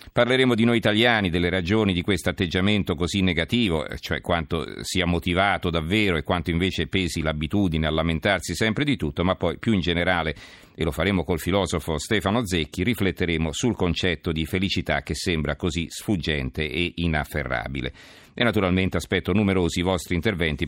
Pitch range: 80-105 Hz